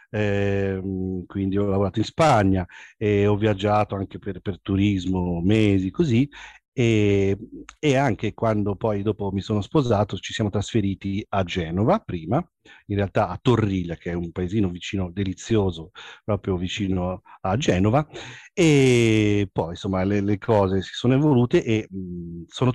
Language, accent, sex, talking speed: Italian, native, male, 140 wpm